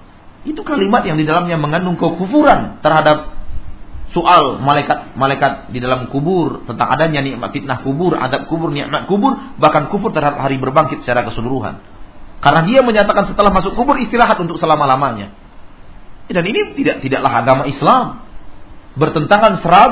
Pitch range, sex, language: 105-170 Hz, male, Malay